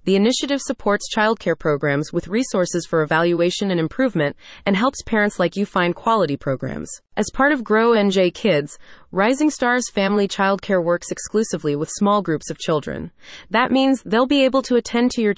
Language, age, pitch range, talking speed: English, 30-49, 170-225 Hz, 175 wpm